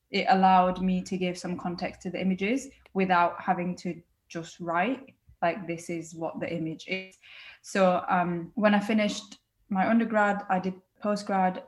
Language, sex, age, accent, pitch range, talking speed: English, female, 10-29, British, 180-200 Hz, 165 wpm